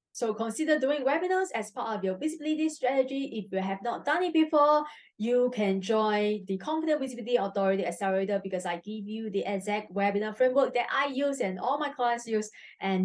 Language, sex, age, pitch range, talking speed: English, female, 20-39, 195-260 Hz, 195 wpm